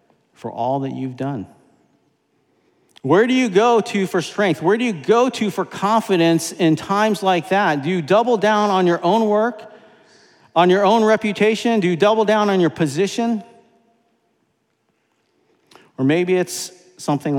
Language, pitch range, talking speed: English, 130-200 Hz, 160 wpm